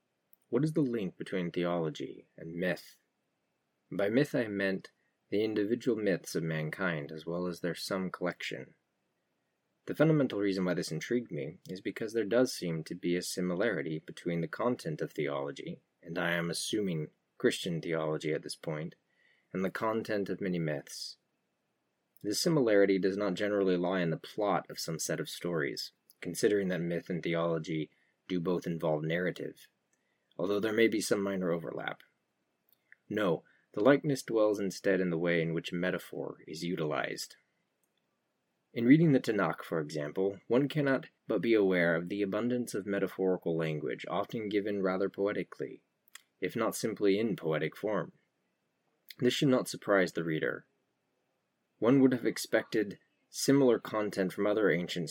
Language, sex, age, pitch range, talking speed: English, male, 30-49, 85-105 Hz, 155 wpm